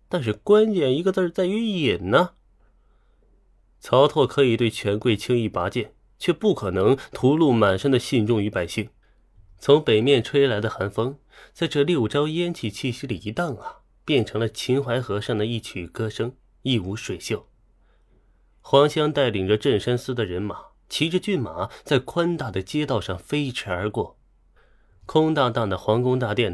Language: Chinese